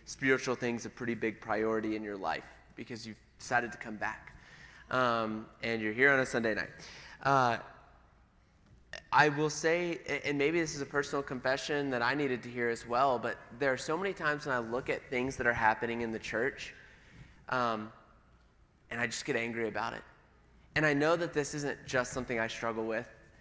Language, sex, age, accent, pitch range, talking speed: English, male, 20-39, American, 115-135 Hz, 195 wpm